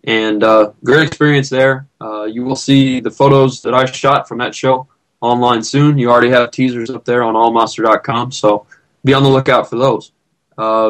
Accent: American